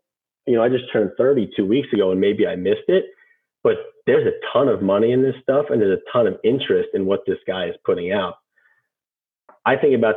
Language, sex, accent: English, male, American